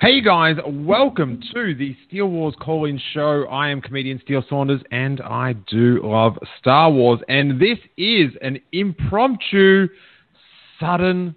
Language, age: English, 40-59